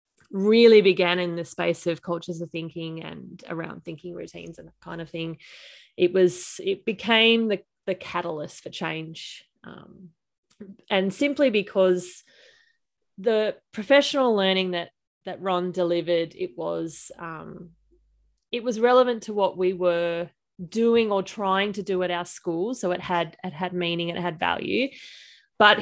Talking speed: 155 wpm